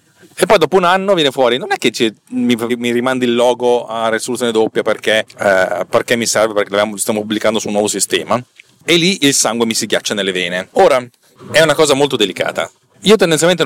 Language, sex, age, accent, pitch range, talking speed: Italian, male, 40-59, native, 110-160 Hz, 215 wpm